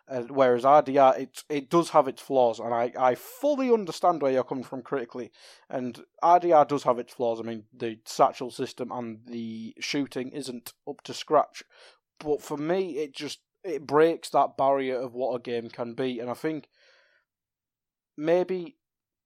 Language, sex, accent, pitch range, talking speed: English, male, British, 120-145 Hz, 175 wpm